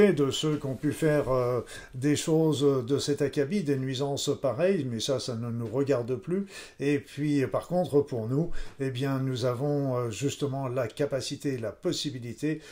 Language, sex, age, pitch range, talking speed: French, male, 50-69, 125-150 Hz, 160 wpm